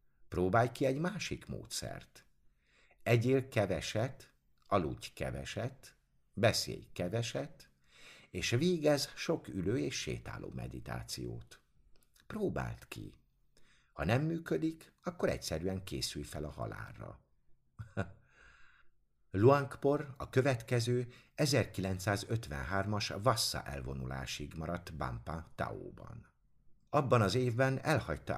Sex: male